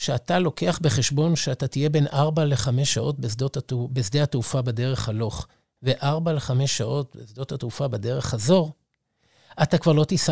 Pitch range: 130-180 Hz